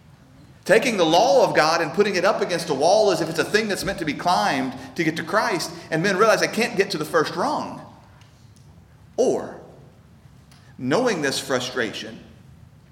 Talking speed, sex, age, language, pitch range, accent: 185 wpm, male, 40-59, English, 130-190 Hz, American